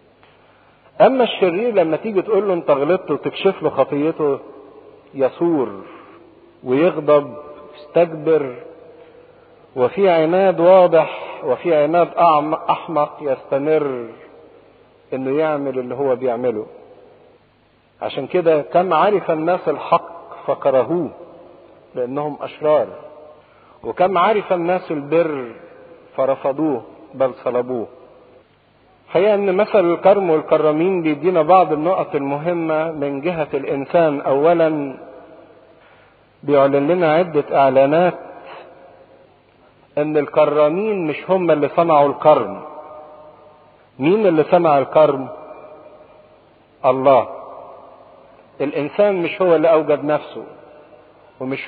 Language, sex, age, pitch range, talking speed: English, male, 50-69, 145-175 Hz, 90 wpm